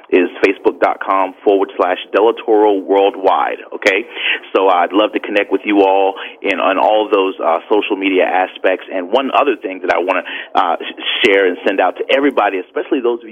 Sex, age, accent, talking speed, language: male, 30-49, American, 185 wpm, English